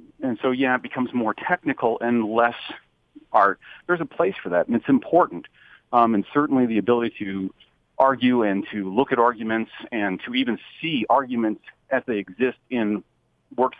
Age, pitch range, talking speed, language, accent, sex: 40-59, 100-130 Hz, 175 wpm, English, American, male